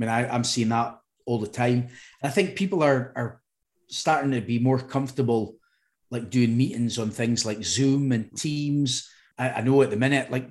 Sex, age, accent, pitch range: male, 30-49, British, 115-135 Hz